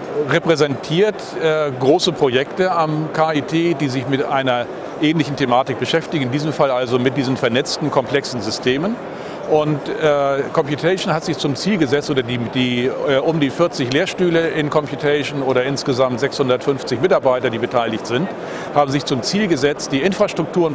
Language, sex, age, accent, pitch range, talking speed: German, male, 40-59, German, 130-155 Hz, 155 wpm